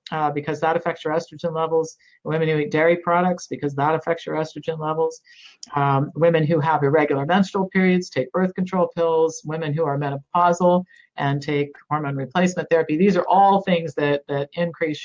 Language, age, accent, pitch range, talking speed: English, 50-69, American, 145-175 Hz, 180 wpm